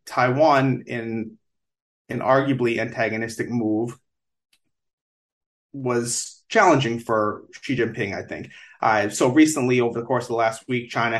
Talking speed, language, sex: 130 wpm, English, male